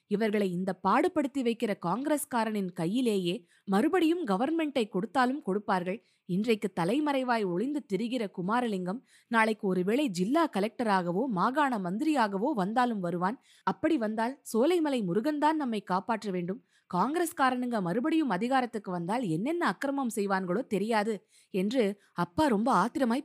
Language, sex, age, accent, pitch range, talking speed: Tamil, female, 20-39, native, 185-260 Hz, 110 wpm